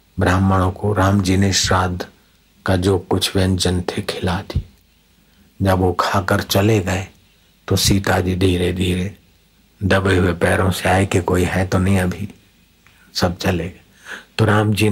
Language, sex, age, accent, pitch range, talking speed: Hindi, male, 60-79, native, 90-100 Hz, 155 wpm